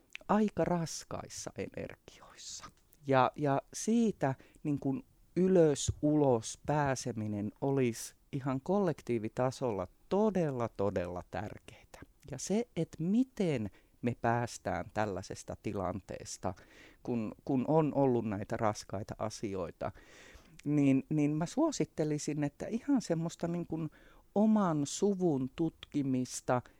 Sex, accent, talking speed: male, native, 85 wpm